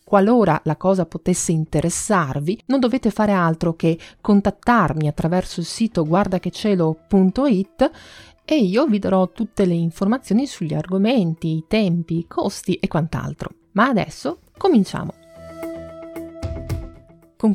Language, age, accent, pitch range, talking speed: Italian, 30-49, native, 165-215 Hz, 115 wpm